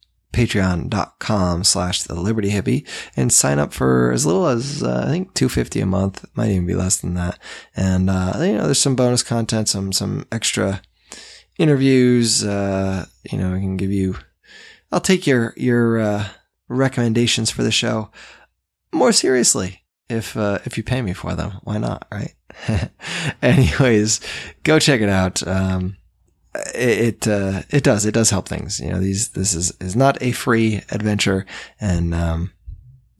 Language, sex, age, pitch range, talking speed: English, male, 20-39, 95-120 Hz, 165 wpm